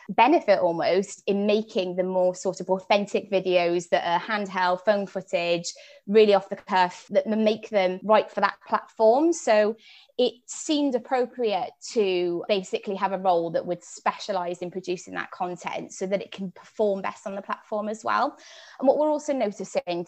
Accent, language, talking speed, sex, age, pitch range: British, English, 175 wpm, female, 20-39, 180-215 Hz